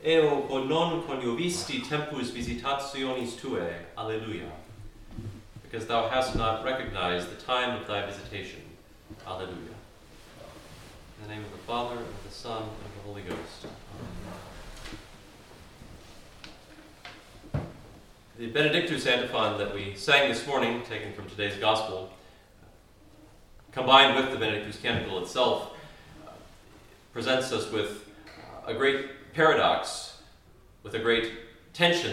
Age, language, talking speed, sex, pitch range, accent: 40-59, English, 115 wpm, male, 105-130 Hz, American